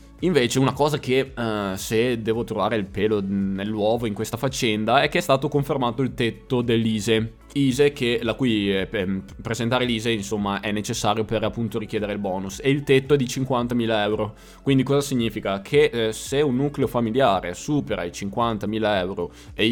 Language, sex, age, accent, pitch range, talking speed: Italian, male, 20-39, native, 105-120 Hz, 175 wpm